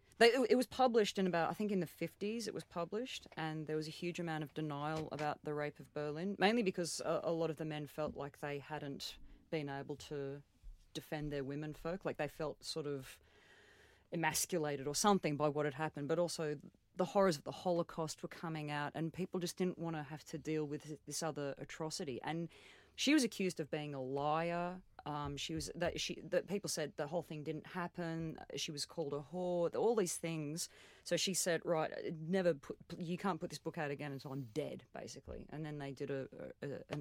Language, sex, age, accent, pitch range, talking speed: English, female, 30-49, Australian, 145-170 Hz, 210 wpm